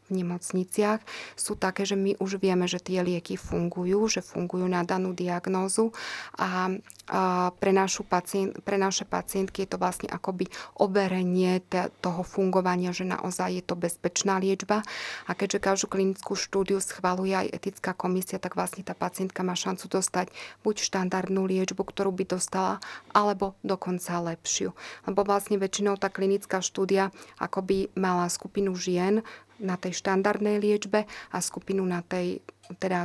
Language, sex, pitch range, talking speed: Slovak, female, 180-195 Hz, 145 wpm